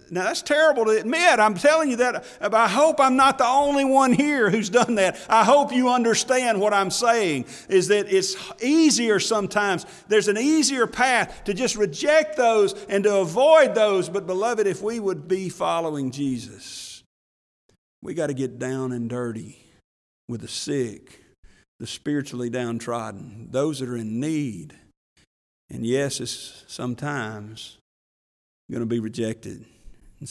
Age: 50-69